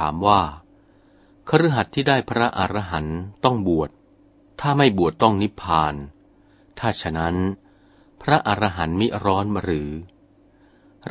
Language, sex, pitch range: Thai, male, 85-130 Hz